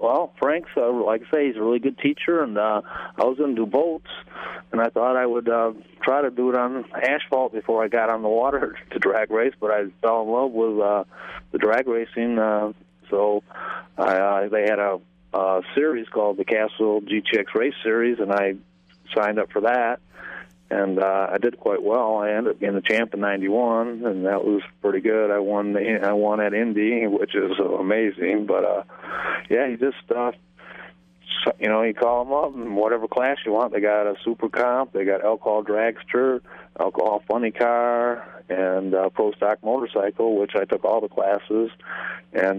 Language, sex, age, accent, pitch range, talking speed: English, male, 30-49, American, 95-115 Hz, 195 wpm